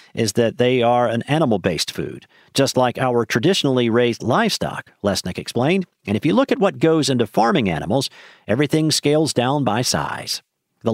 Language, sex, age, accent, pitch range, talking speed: English, male, 50-69, American, 115-155 Hz, 170 wpm